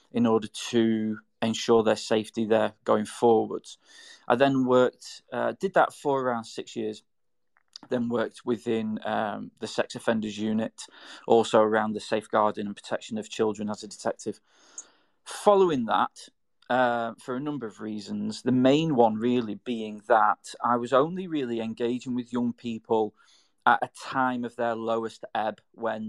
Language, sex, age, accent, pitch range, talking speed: English, male, 20-39, British, 110-125 Hz, 155 wpm